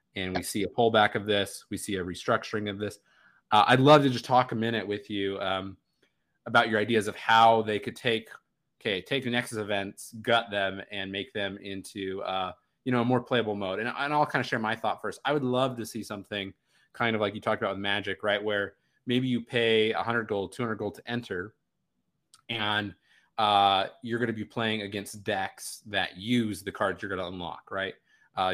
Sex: male